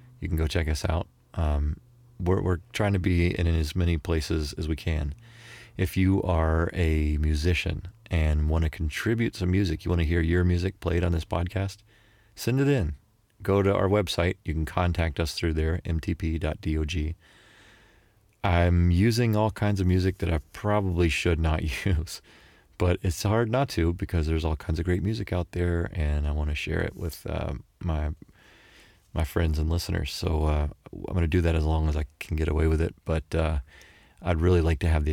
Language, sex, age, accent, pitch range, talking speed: English, male, 30-49, American, 80-95 Hz, 200 wpm